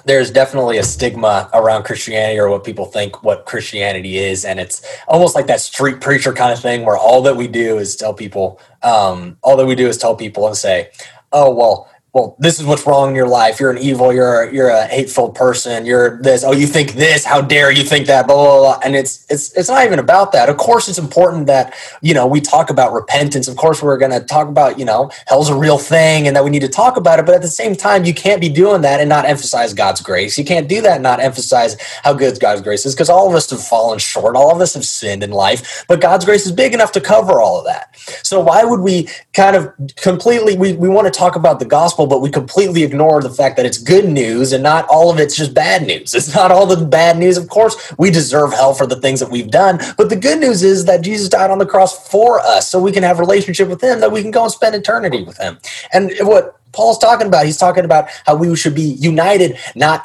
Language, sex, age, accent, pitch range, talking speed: English, male, 20-39, American, 130-180 Hz, 260 wpm